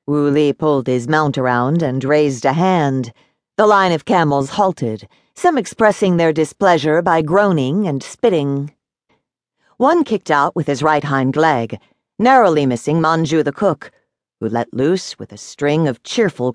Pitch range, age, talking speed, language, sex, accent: 125-165 Hz, 50-69, 160 wpm, English, female, American